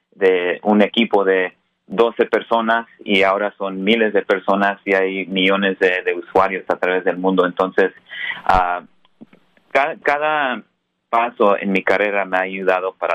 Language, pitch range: Spanish, 95-115 Hz